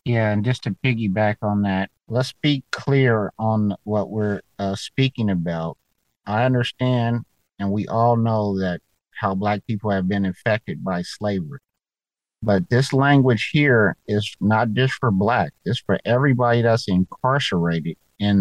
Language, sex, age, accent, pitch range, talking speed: English, male, 50-69, American, 100-120 Hz, 150 wpm